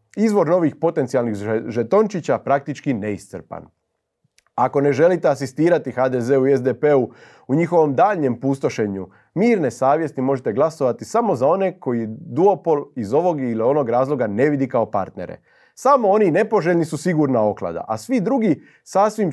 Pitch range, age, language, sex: 115-155 Hz, 30-49, Croatian, male